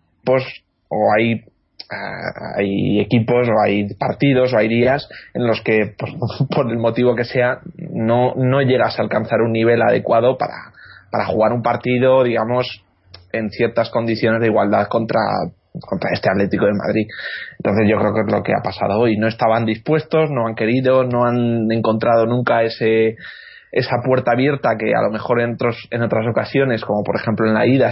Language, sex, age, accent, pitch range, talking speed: Spanish, male, 20-39, Spanish, 110-130 Hz, 175 wpm